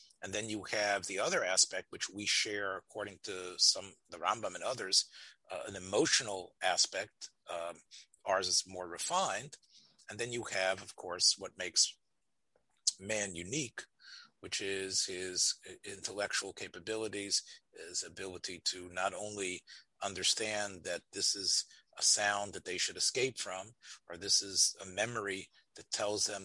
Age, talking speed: 40-59, 150 wpm